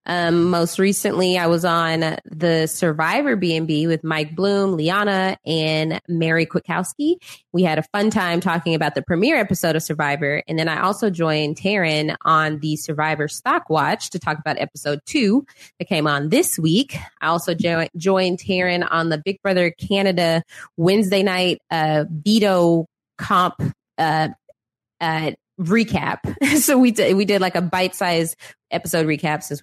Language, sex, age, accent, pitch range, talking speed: English, female, 20-39, American, 160-200 Hz, 150 wpm